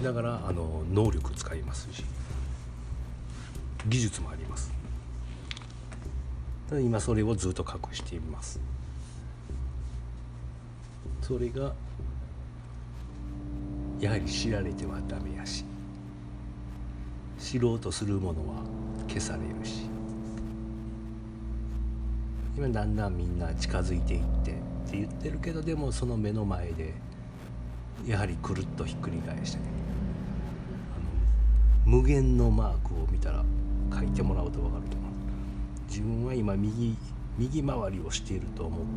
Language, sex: Japanese, male